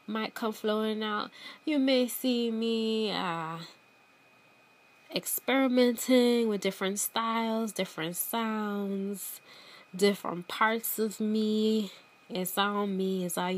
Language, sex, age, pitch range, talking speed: English, female, 20-39, 190-250 Hz, 105 wpm